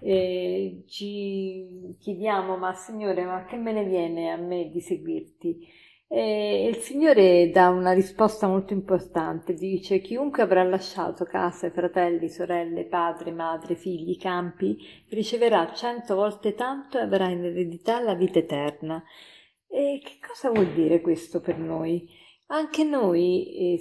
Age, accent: 40-59, native